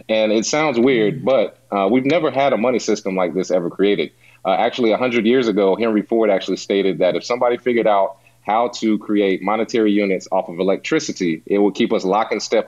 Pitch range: 95-110 Hz